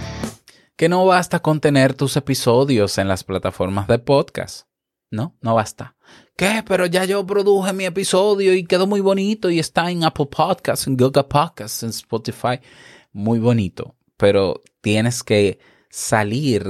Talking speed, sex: 150 wpm, male